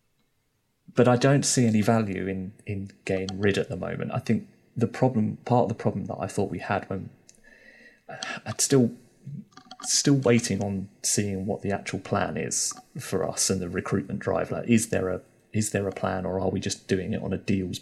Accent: British